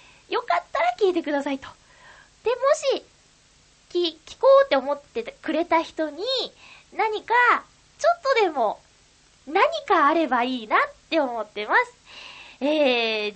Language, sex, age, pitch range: Japanese, female, 20-39, 250-395 Hz